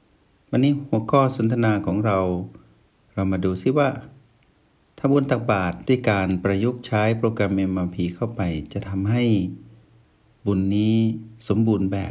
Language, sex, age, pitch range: Thai, male, 60-79, 95-115 Hz